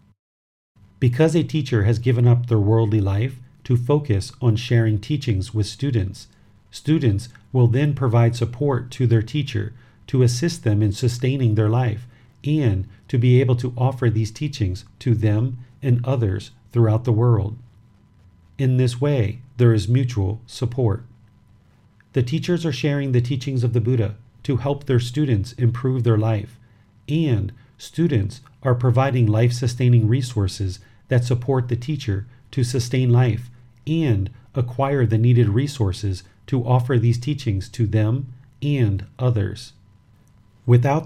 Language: English